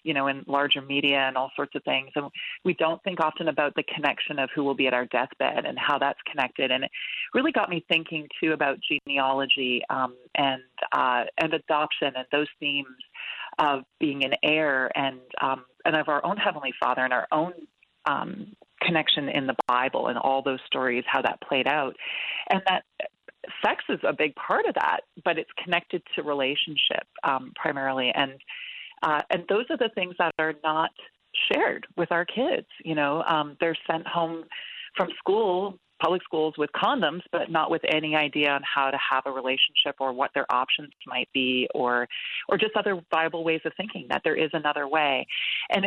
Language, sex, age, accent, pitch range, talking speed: English, female, 30-49, American, 135-165 Hz, 190 wpm